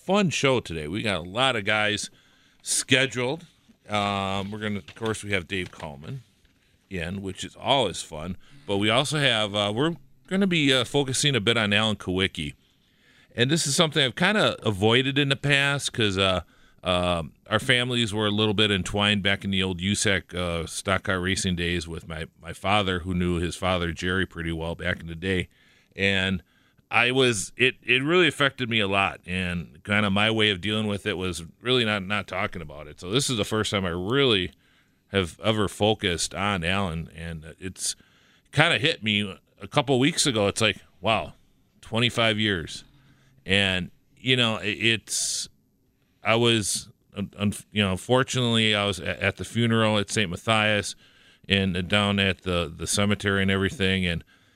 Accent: American